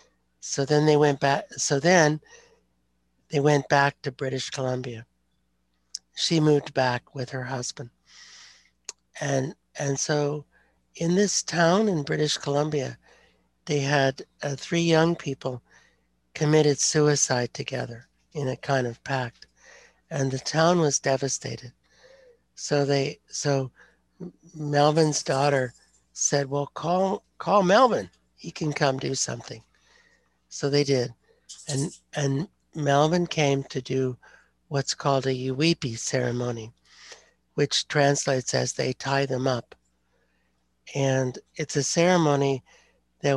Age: 60-79